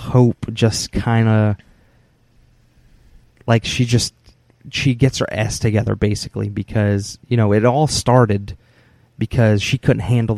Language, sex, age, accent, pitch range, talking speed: English, male, 20-39, American, 105-120 Hz, 135 wpm